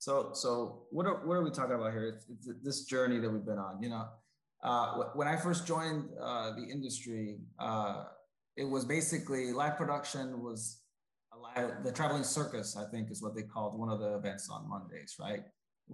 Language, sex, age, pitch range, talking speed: English, male, 20-39, 115-150 Hz, 205 wpm